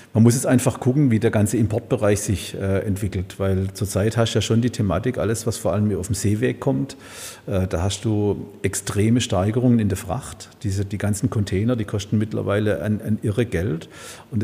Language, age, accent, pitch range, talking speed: German, 50-69, German, 105-120 Hz, 210 wpm